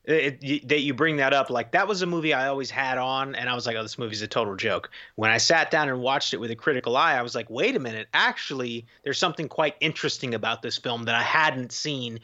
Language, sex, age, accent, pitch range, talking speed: English, male, 30-49, American, 125-165 Hz, 260 wpm